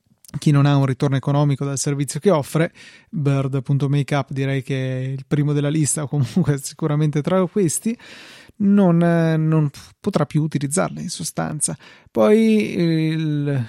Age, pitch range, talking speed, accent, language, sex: 30-49, 145-170 Hz, 140 wpm, native, Italian, male